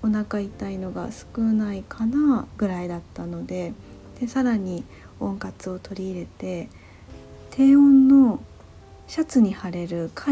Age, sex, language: 40-59, female, Japanese